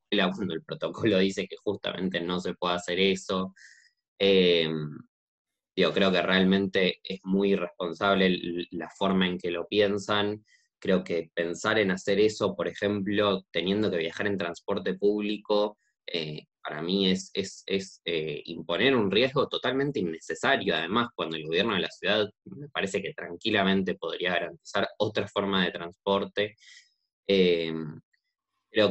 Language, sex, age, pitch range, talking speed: Spanish, male, 20-39, 90-105 Hz, 145 wpm